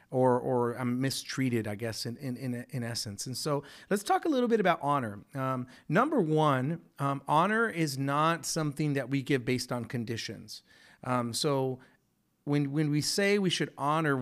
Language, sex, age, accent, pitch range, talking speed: English, male, 30-49, American, 125-155 Hz, 175 wpm